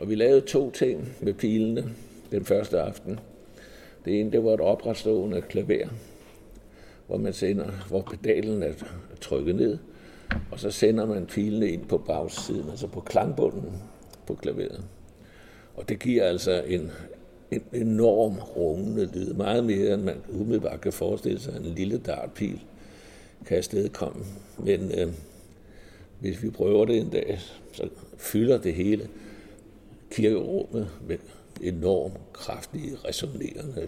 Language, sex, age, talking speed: Danish, male, 60-79, 135 wpm